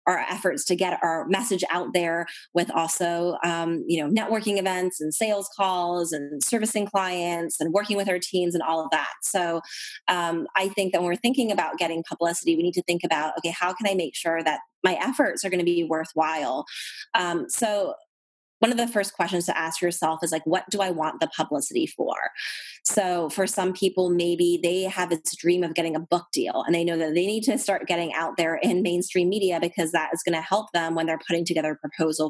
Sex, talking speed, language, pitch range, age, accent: female, 225 wpm, English, 165-190 Hz, 20-39, American